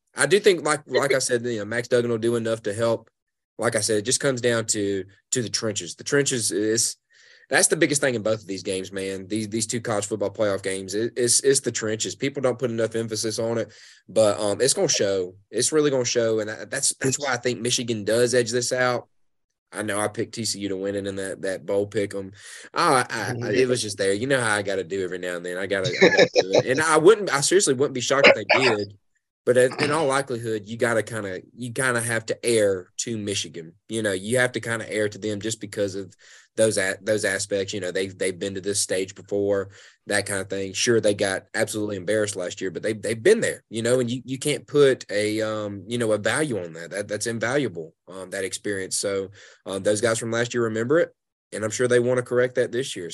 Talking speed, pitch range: 255 wpm, 100-125 Hz